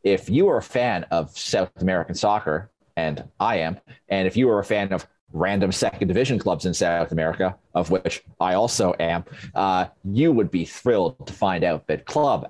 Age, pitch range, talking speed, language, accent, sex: 30-49, 95-135 Hz, 195 wpm, English, American, male